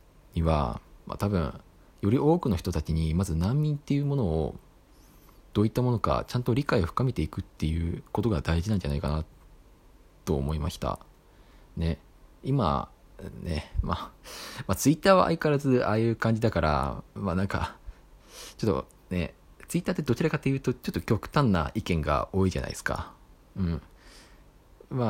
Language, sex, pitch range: Japanese, male, 80-120 Hz